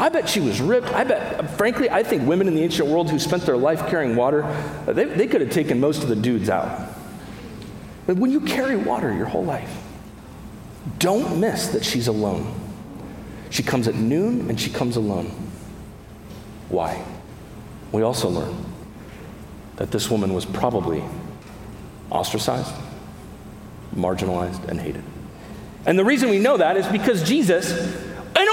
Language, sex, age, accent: English, male, 40-59, American